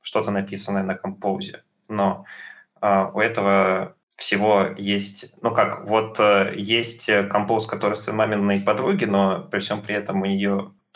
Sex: male